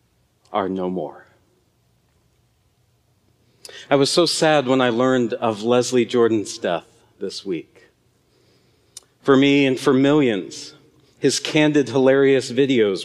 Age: 40-59